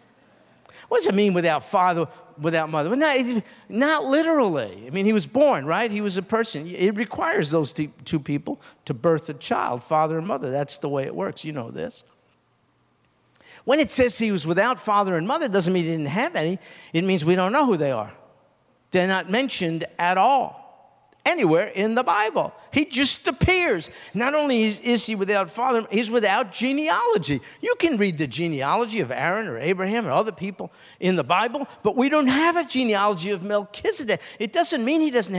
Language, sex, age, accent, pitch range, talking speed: English, male, 50-69, American, 165-245 Hz, 195 wpm